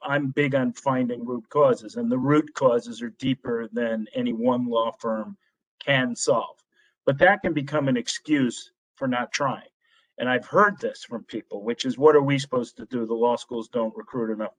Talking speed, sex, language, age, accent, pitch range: 200 wpm, male, English, 40-59, American, 120-170 Hz